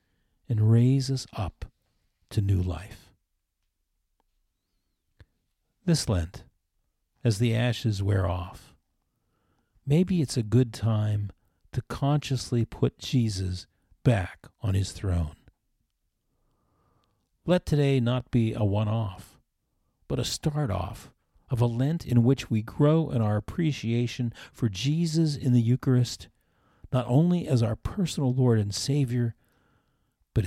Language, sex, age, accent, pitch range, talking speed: English, male, 40-59, American, 100-130 Hz, 120 wpm